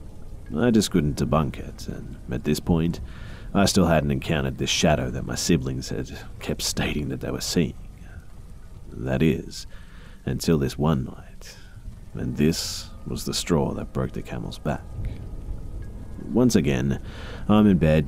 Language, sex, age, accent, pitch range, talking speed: English, male, 30-49, Australian, 65-95 Hz, 155 wpm